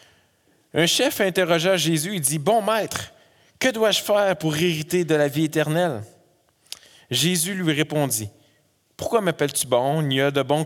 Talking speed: 175 wpm